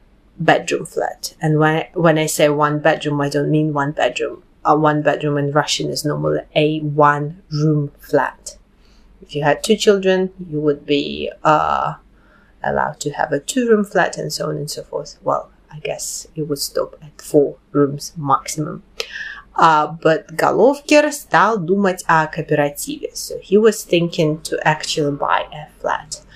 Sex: female